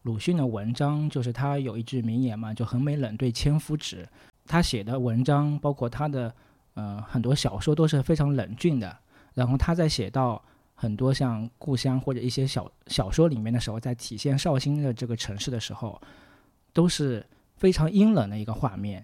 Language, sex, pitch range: Chinese, male, 115-145 Hz